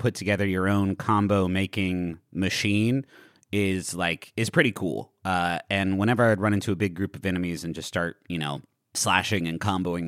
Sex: male